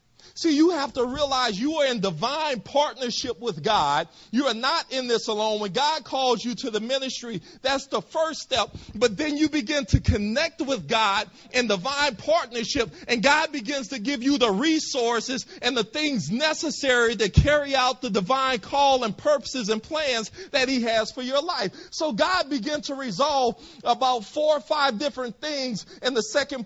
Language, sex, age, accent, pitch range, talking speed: English, male, 40-59, American, 230-295 Hz, 185 wpm